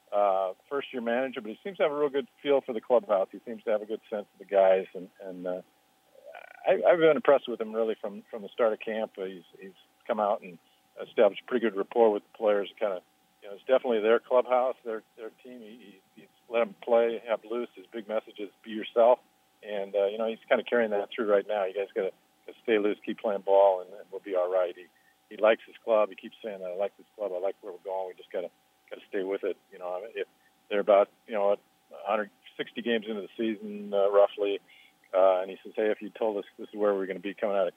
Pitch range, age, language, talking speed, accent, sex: 95-115 Hz, 50-69, English, 260 wpm, American, male